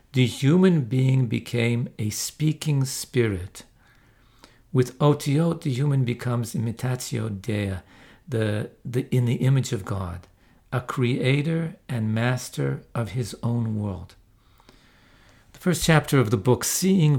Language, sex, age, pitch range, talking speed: English, male, 50-69, 110-130 Hz, 120 wpm